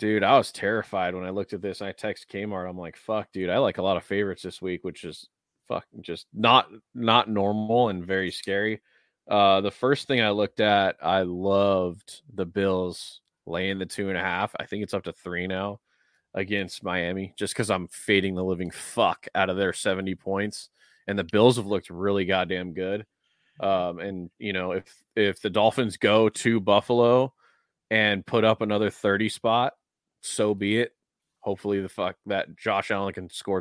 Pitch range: 95-110 Hz